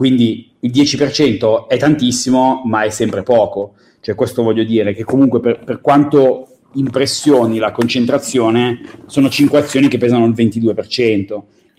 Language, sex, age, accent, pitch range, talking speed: Italian, male, 30-49, native, 110-130 Hz, 145 wpm